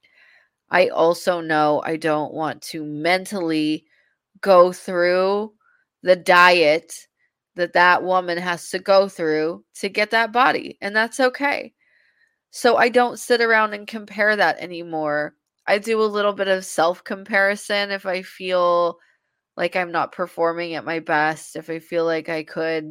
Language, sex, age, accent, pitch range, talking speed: English, female, 20-39, American, 170-220 Hz, 150 wpm